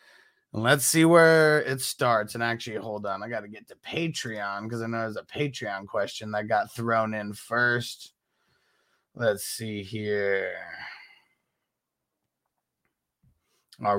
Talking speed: 135 wpm